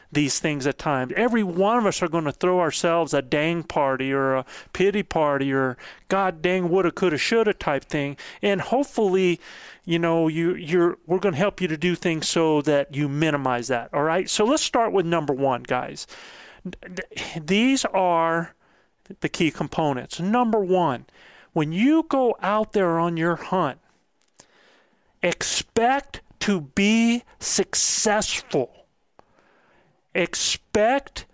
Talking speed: 145 wpm